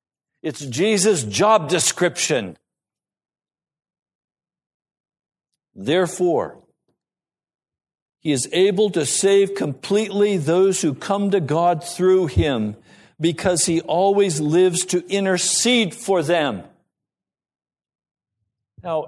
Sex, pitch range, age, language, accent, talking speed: male, 145-195 Hz, 60-79, English, American, 85 wpm